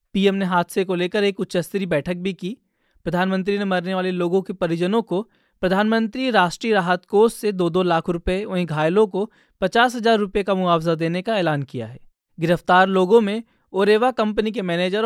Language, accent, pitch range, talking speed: Hindi, native, 175-210 Hz, 190 wpm